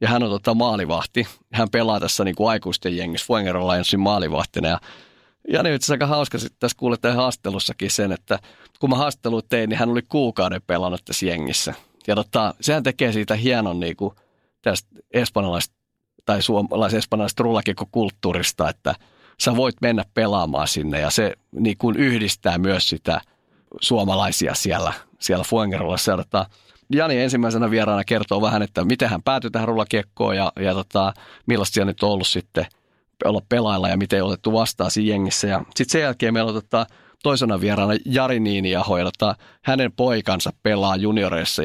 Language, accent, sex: Finnish, native, male